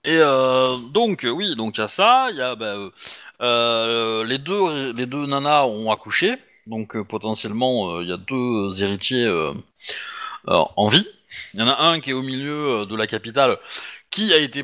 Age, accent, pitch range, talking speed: 30-49, French, 110-145 Hz, 210 wpm